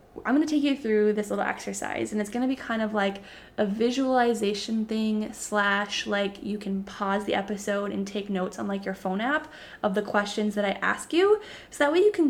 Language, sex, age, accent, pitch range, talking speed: English, female, 10-29, American, 205-245 Hz, 230 wpm